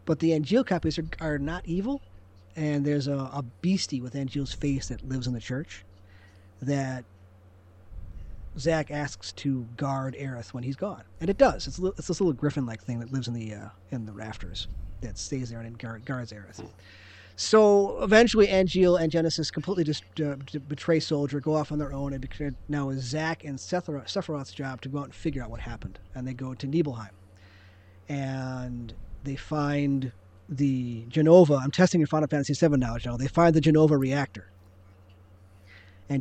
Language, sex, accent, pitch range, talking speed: English, male, American, 100-155 Hz, 175 wpm